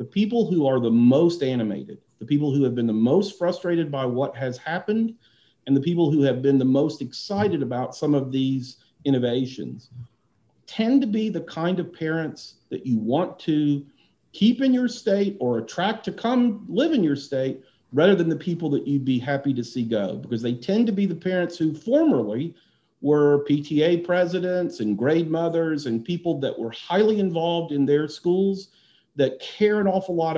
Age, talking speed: 50-69, 190 wpm